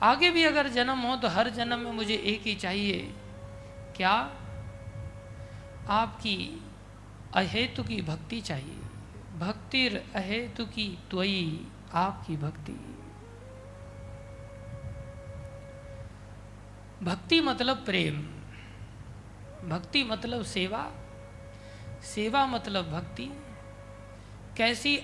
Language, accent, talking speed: Hindi, native, 85 wpm